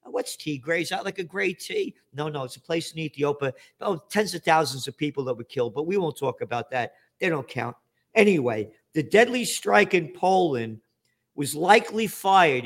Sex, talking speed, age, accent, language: male, 200 wpm, 50-69, American, English